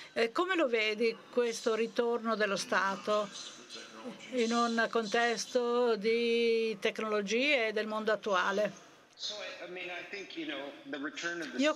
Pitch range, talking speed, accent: 210-250 Hz, 80 wpm, native